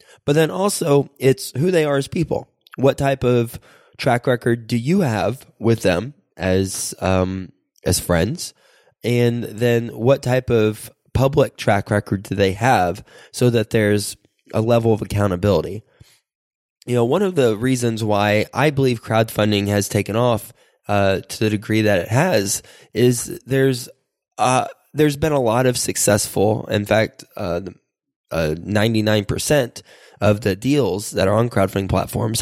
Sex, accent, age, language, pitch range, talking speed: male, American, 20-39, English, 105-125 Hz, 155 wpm